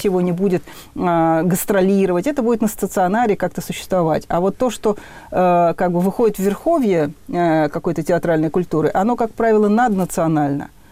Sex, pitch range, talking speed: female, 160-215 Hz, 160 wpm